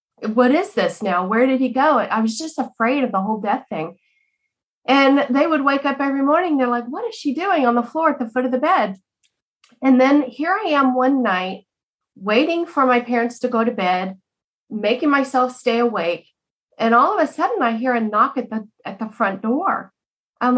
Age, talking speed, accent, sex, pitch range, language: 40-59, 220 wpm, American, female, 220-270 Hz, English